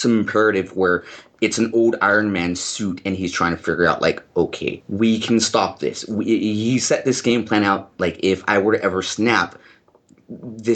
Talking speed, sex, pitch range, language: 195 wpm, male, 95-115 Hz, English